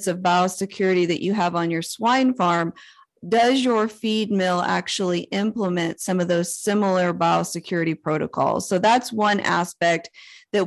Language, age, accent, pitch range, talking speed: English, 40-59, American, 175-210 Hz, 145 wpm